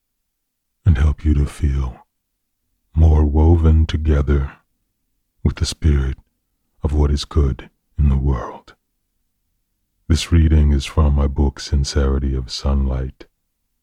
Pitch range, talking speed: 75-85 Hz, 115 wpm